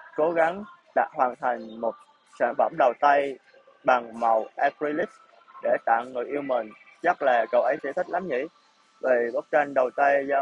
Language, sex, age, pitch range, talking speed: Vietnamese, male, 20-39, 120-155 Hz, 185 wpm